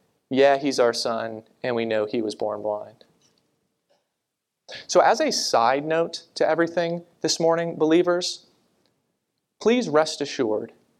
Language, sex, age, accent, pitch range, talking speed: English, male, 30-49, American, 135-170 Hz, 130 wpm